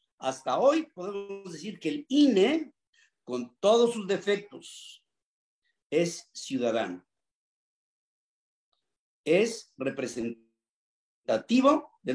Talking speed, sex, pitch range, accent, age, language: 80 wpm, male, 165-255 Hz, Mexican, 50-69, Spanish